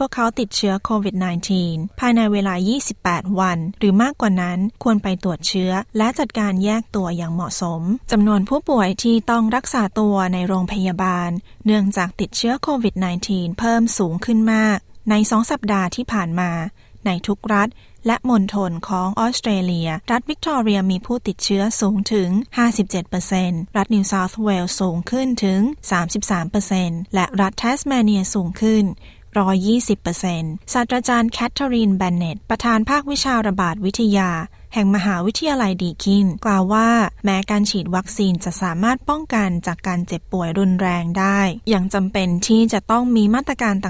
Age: 20-39